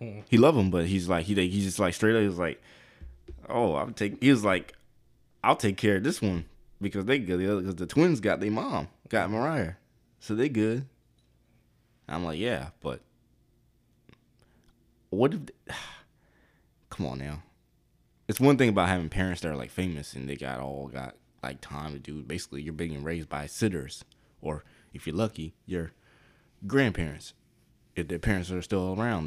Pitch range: 80-110 Hz